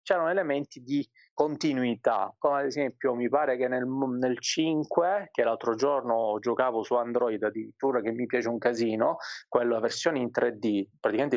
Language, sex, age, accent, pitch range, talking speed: Italian, male, 30-49, native, 115-150 Hz, 160 wpm